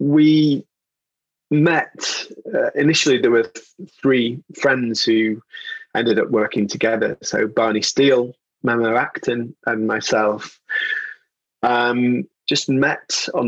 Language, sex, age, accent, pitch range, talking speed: English, male, 20-39, British, 110-130 Hz, 105 wpm